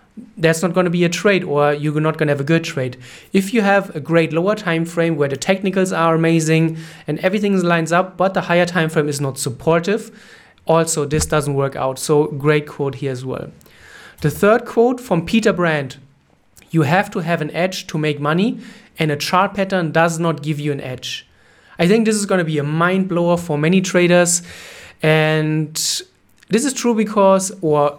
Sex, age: male, 30-49